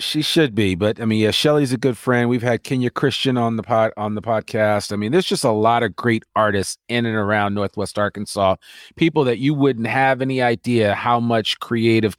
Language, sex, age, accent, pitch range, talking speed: English, male, 40-59, American, 100-120 Hz, 220 wpm